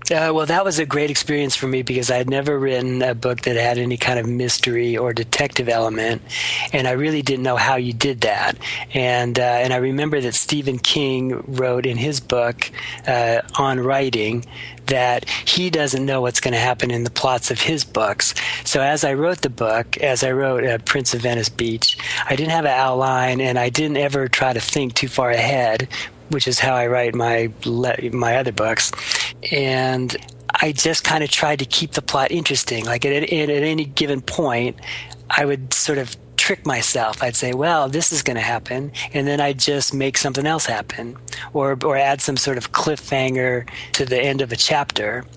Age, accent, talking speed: 40-59, American, 205 wpm